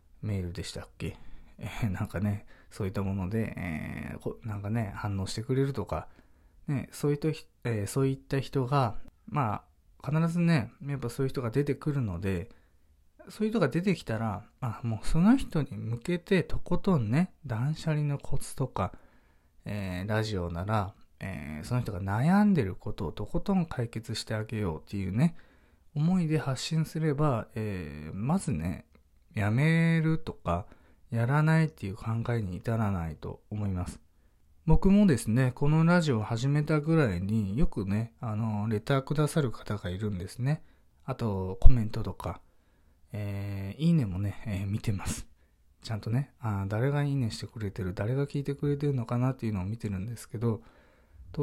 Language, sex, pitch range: Japanese, male, 95-140 Hz